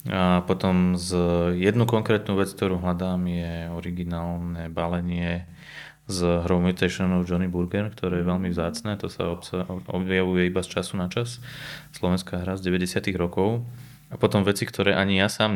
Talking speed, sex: 160 wpm, male